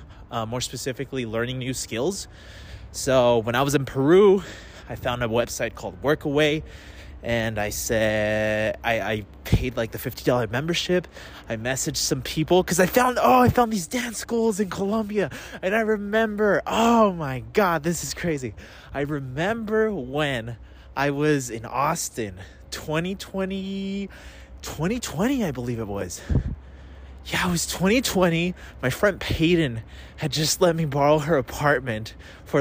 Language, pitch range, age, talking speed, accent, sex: English, 110-165 Hz, 20-39, 145 wpm, American, male